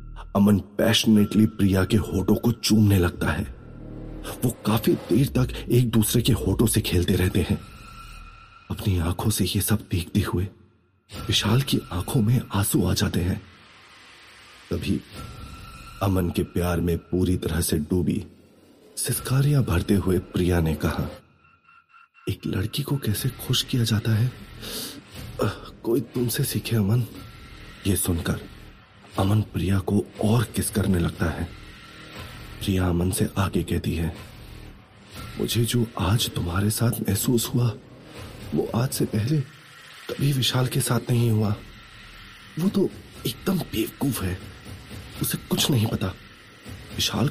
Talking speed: 135 wpm